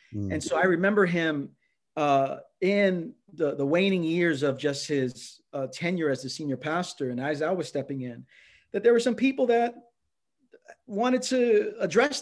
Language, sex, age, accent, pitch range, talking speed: English, male, 40-59, American, 130-165 Hz, 170 wpm